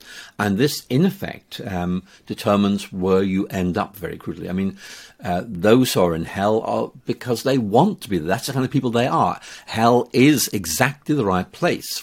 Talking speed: 195 wpm